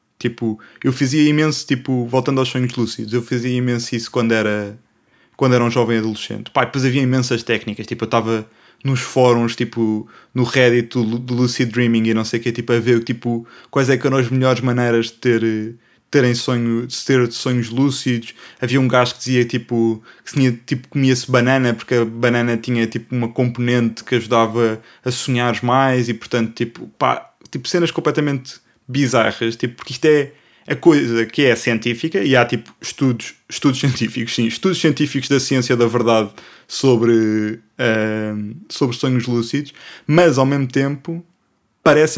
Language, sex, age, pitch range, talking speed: Portuguese, male, 20-39, 115-135 Hz, 170 wpm